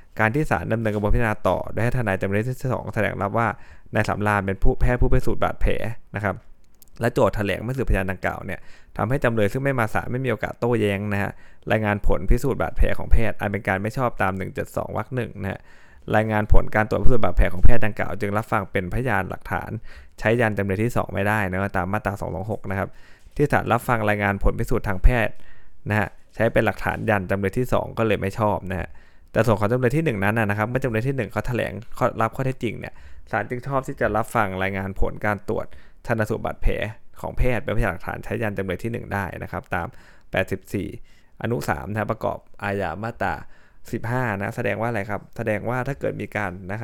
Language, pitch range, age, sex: Thai, 95-115 Hz, 20-39, male